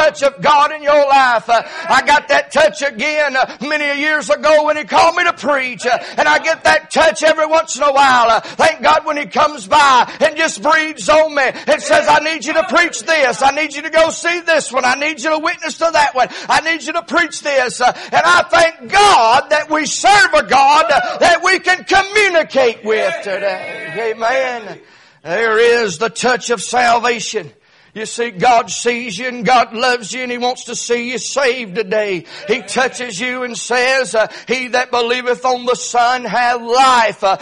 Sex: male